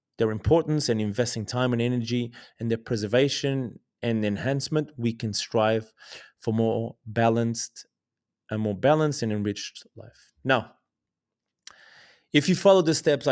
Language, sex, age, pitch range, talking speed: English, male, 30-49, 115-135 Hz, 135 wpm